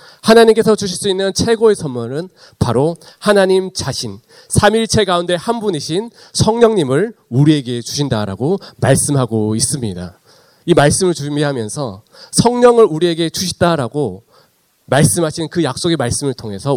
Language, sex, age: Korean, male, 40-59